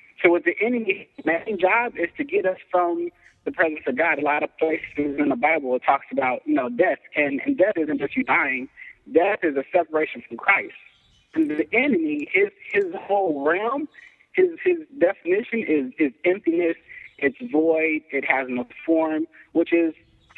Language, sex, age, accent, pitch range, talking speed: English, male, 40-59, American, 150-235 Hz, 180 wpm